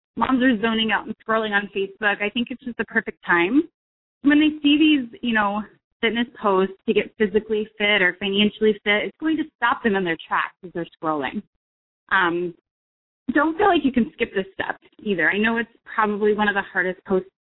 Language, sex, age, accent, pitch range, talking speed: English, female, 20-39, American, 195-260 Hz, 205 wpm